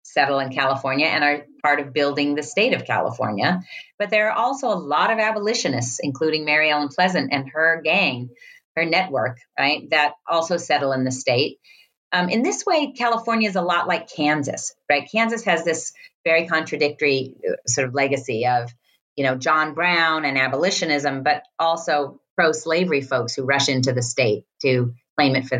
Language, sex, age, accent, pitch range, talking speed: English, female, 40-59, American, 130-165 Hz, 175 wpm